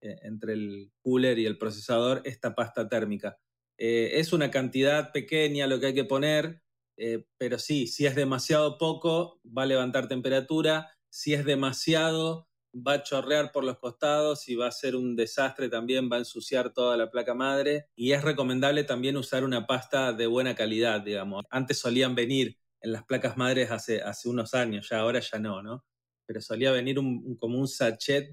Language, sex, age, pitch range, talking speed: Spanish, male, 30-49, 115-135 Hz, 185 wpm